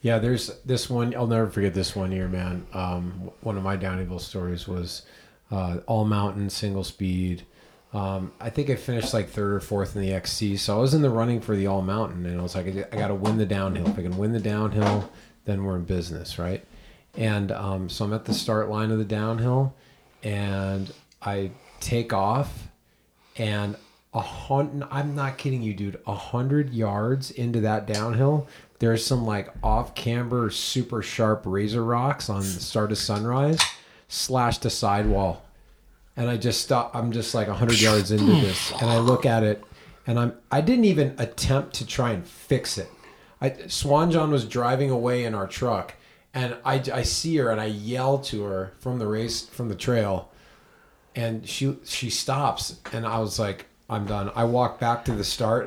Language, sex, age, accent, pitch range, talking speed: English, male, 30-49, American, 100-120 Hz, 195 wpm